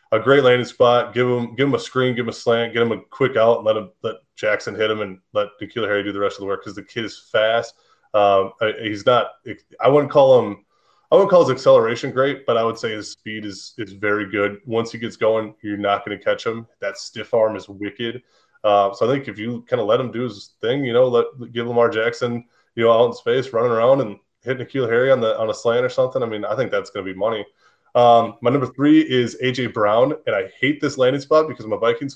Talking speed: 260 wpm